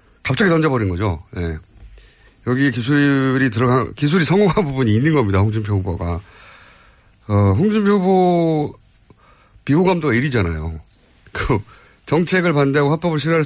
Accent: native